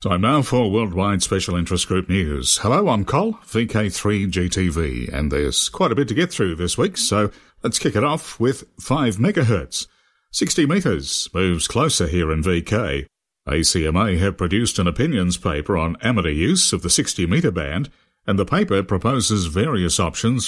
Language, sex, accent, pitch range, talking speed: English, male, British, 85-110 Hz, 165 wpm